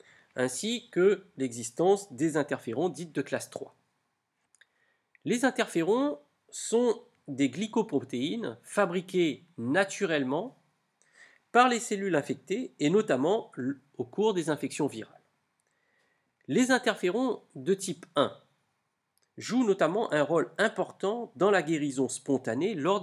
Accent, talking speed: French, 110 wpm